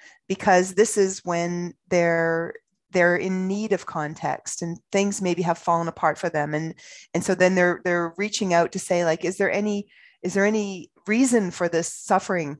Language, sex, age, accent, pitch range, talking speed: English, female, 30-49, American, 165-195 Hz, 185 wpm